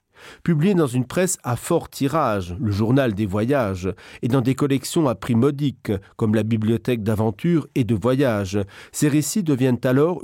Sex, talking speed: male, 170 wpm